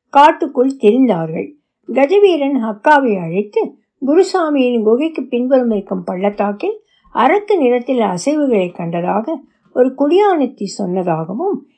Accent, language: native, Tamil